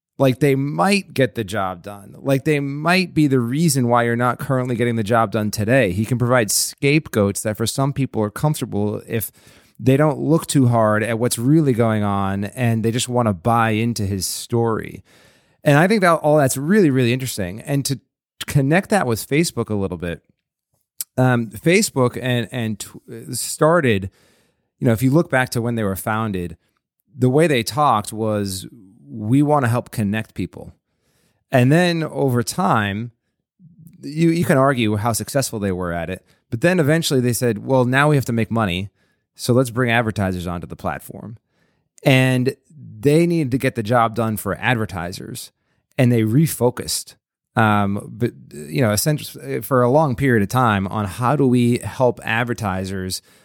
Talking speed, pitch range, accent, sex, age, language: 180 wpm, 105-135 Hz, American, male, 30-49, English